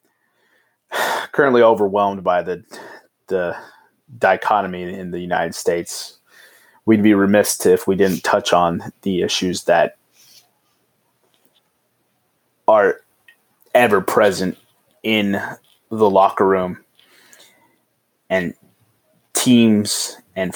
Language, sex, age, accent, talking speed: English, male, 20-39, American, 90 wpm